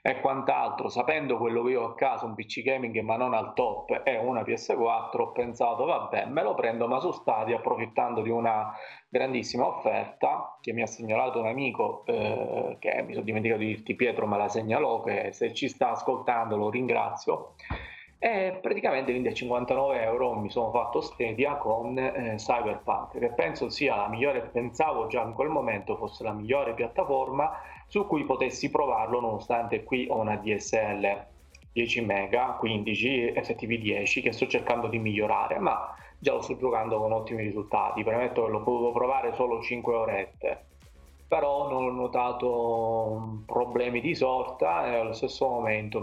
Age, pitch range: 30-49, 110-140 Hz